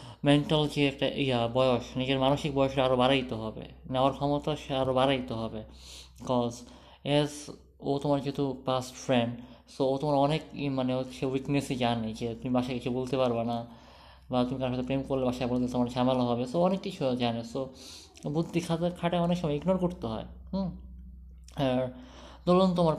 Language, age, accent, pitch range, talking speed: Bengali, 20-39, native, 120-145 Hz, 175 wpm